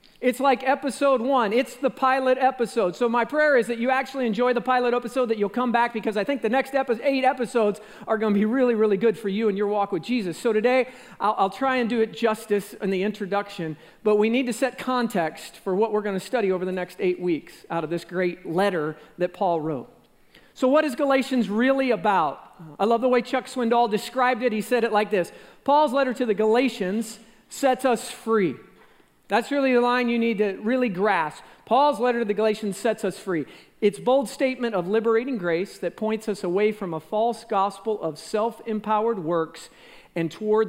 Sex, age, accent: male, 40-59, American